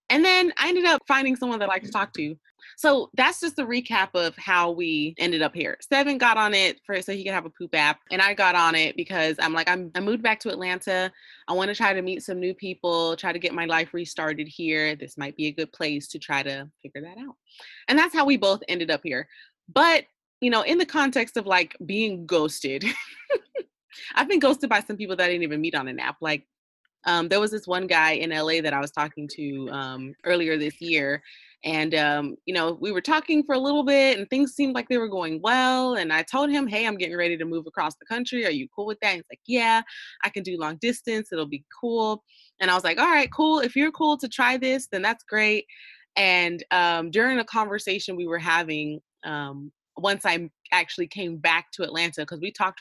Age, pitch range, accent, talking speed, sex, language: 20-39, 160-235 Hz, American, 240 wpm, female, English